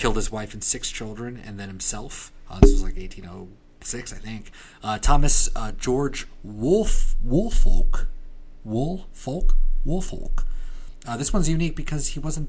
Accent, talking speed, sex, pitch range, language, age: American, 150 wpm, male, 90-120 Hz, English, 30-49